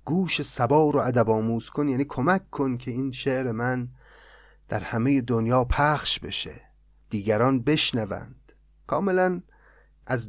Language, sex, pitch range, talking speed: Persian, male, 110-135 Hz, 130 wpm